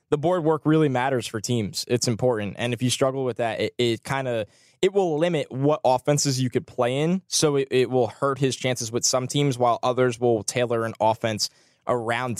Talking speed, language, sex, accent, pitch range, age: 220 wpm, English, male, American, 115-145 Hz, 10-29